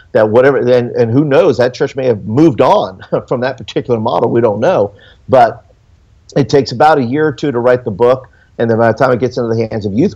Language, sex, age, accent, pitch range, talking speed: English, male, 50-69, American, 110-125 Hz, 250 wpm